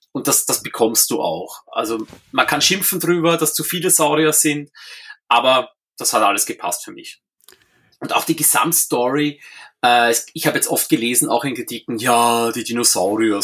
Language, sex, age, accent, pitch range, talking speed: German, male, 30-49, German, 120-165 Hz, 175 wpm